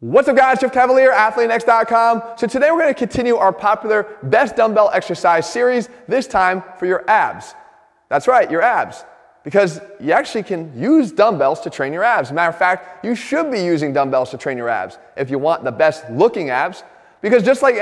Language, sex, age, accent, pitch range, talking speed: English, male, 30-49, American, 175-240 Hz, 200 wpm